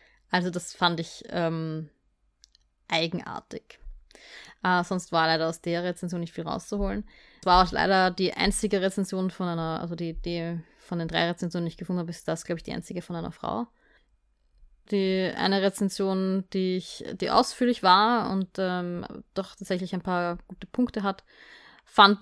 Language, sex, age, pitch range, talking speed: German, female, 20-39, 170-200 Hz, 170 wpm